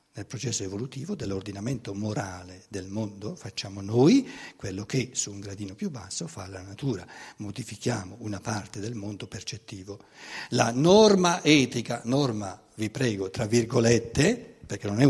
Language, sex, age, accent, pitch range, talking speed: Italian, male, 60-79, native, 105-155 Hz, 145 wpm